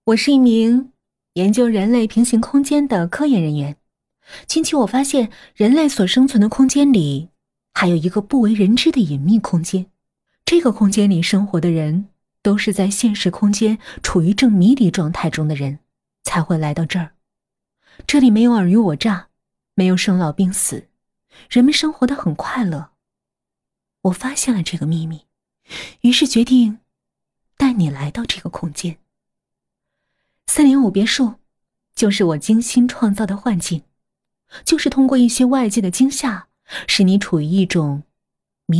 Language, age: Chinese, 20-39